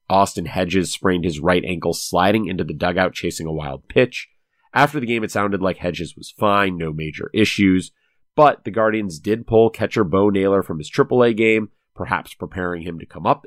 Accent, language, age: American, English, 30-49